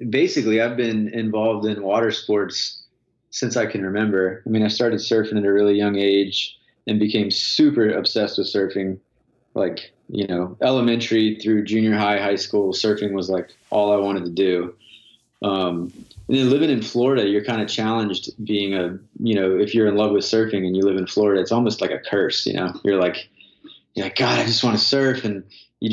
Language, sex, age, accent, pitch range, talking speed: English, male, 20-39, American, 95-110 Hz, 205 wpm